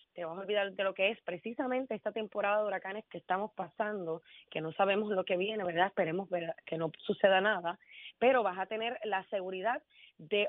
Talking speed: 200 wpm